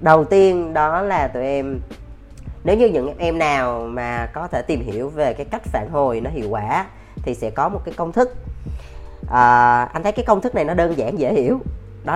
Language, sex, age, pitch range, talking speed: Vietnamese, female, 20-39, 120-175 Hz, 210 wpm